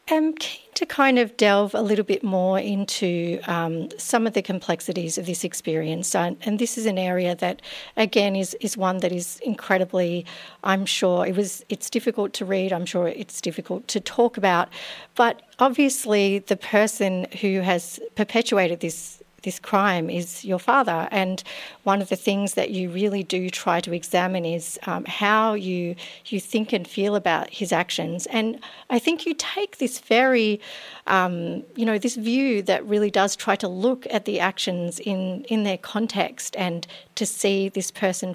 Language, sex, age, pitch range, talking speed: English, female, 40-59, 180-225 Hz, 175 wpm